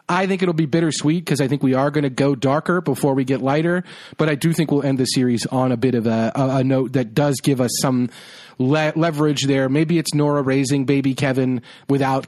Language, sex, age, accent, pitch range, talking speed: English, male, 40-59, American, 120-145 Hz, 235 wpm